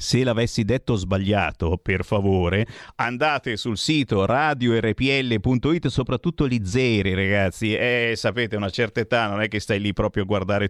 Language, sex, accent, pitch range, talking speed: Italian, male, native, 105-150 Hz, 150 wpm